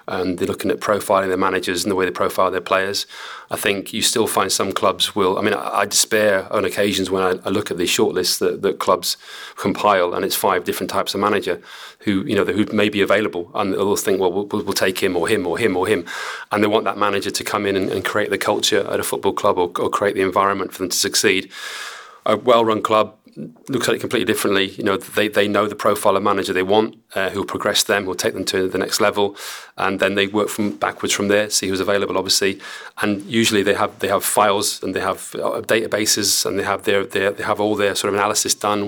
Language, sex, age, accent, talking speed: English, male, 30-49, British, 250 wpm